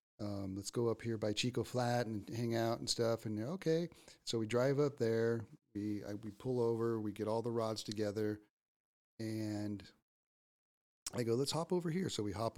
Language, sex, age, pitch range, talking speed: English, male, 40-59, 100-120 Hz, 195 wpm